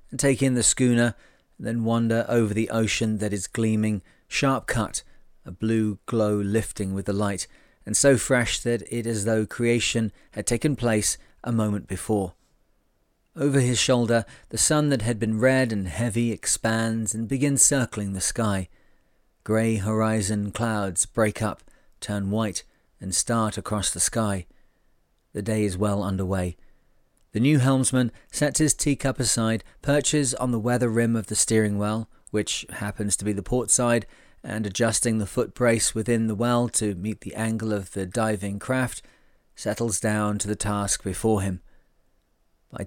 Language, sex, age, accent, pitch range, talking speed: English, male, 40-59, British, 105-120 Hz, 165 wpm